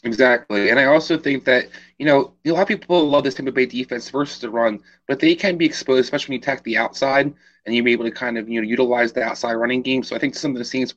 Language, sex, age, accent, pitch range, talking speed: English, male, 30-49, American, 115-135 Hz, 290 wpm